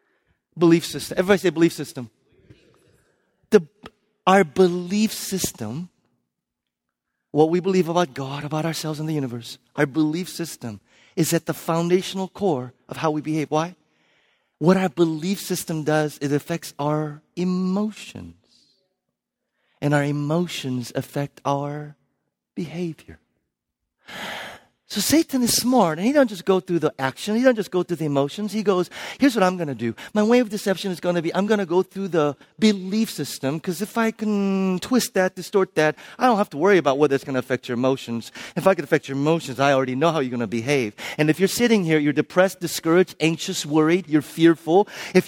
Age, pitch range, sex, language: 40-59, 150-195 Hz, male, English